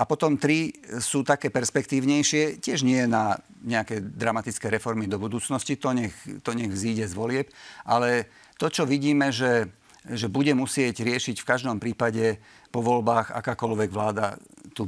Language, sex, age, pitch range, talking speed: Slovak, male, 50-69, 110-130 Hz, 155 wpm